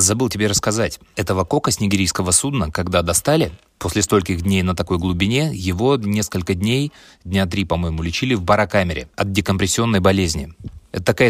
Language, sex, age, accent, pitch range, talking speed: Russian, male, 20-39, native, 90-105 Hz, 160 wpm